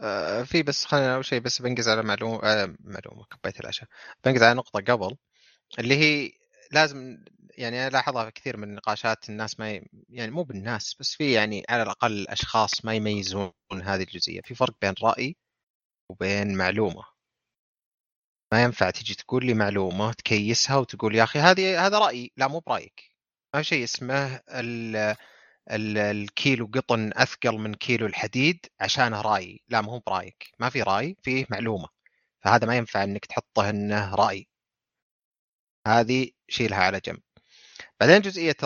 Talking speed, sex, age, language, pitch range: 155 wpm, male, 30-49, Arabic, 105-130 Hz